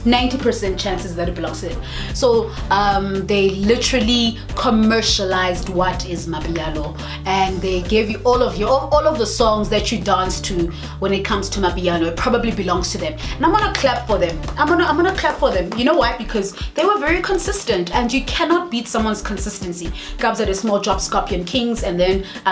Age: 30-49